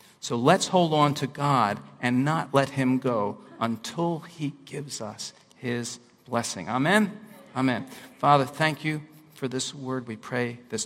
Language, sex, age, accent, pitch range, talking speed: English, male, 50-69, American, 120-145 Hz, 155 wpm